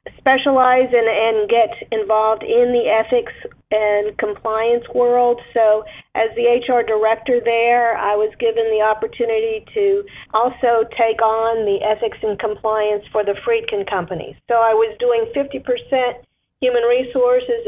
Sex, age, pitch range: female, 40-59, 220-270 Hz